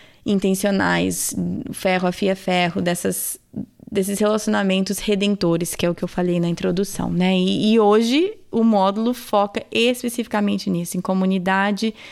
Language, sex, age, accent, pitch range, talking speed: Portuguese, female, 20-39, Brazilian, 200-235 Hz, 140 wpm